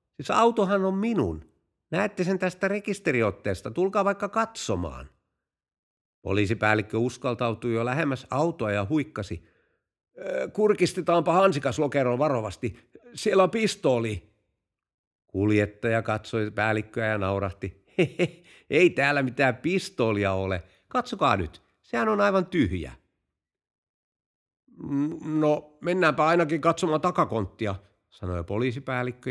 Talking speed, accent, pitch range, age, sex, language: 100 wpm, native, 105-165 Hz, 50-69, male, Finnish